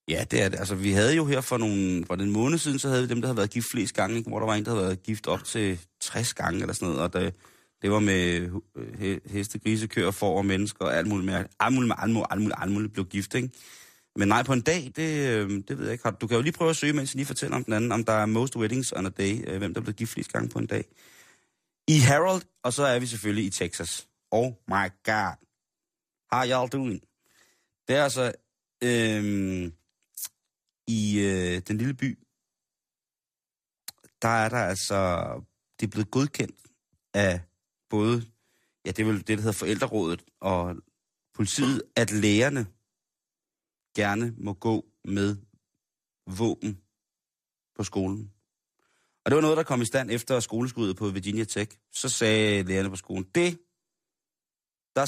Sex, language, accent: male, Danish, native